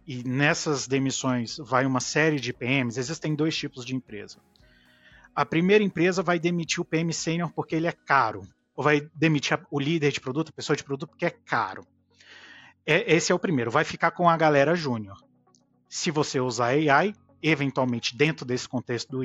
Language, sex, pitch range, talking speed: Portuguese, male, 125-165 Hz, 180 wpm